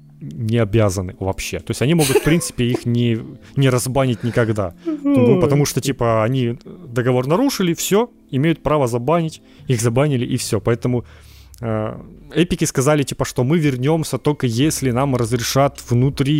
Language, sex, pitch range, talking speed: Ukrainian, male, 115-150 Hz, 150 wpm